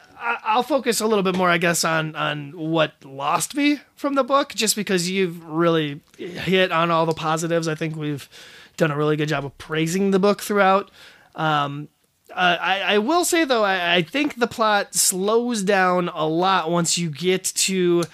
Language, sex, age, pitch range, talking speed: English, male, 30-49, 155-200 Hz, 190 wpm